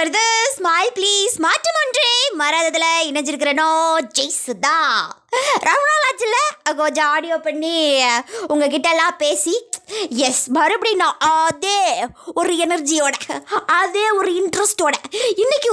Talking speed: 65 wpm